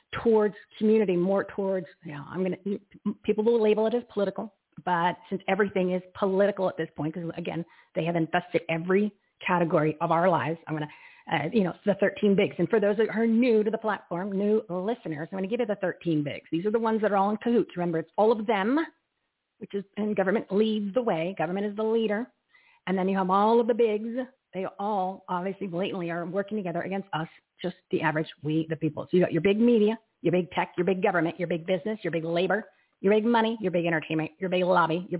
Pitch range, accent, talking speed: 170-210 Hz, American, 235 wpm